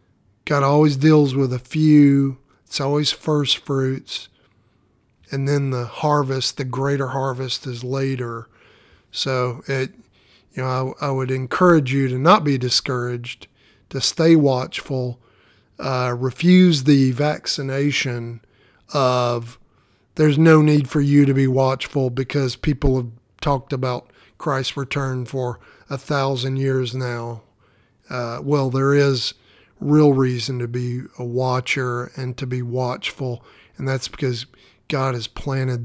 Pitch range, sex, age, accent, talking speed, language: 125-140 Hz, male, 50-69, American, 135 wpm, English